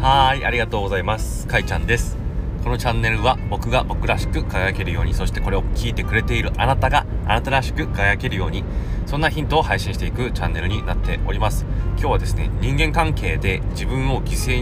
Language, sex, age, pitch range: Japanese, male, 20-39, 95-115 Hz